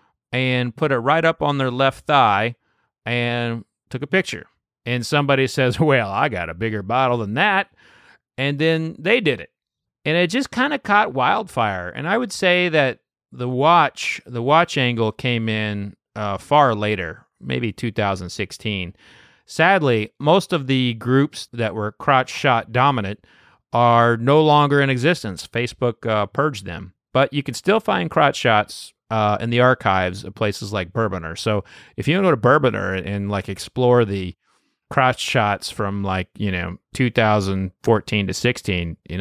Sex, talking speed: male, 160 wpm